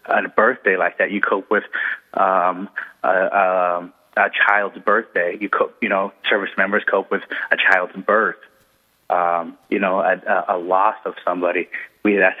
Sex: male